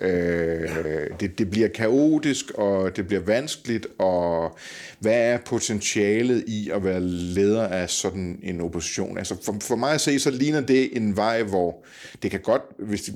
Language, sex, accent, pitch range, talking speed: Danish, male, native, 95-120 Hz, 160 wpm